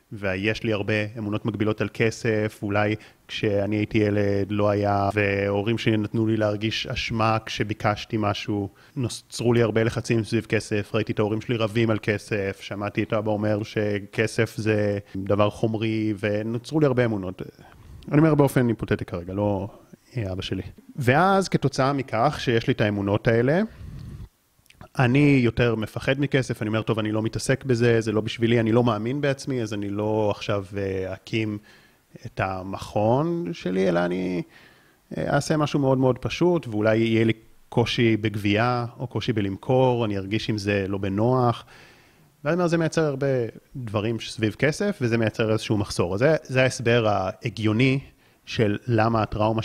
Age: 30-49